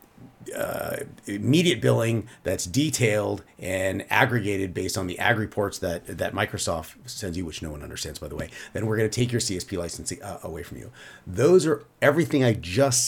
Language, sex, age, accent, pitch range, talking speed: English, male, 40-59, American, 100-130 Hz, 190 wpm